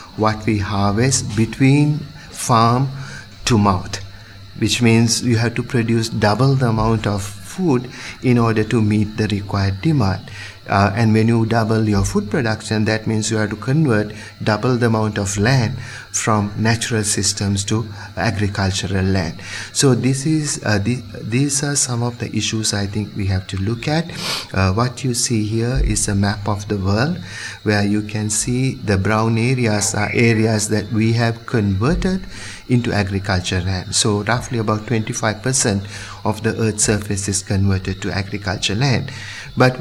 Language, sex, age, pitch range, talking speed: English, male, 50-69, 100-120 Hz, 165 wpm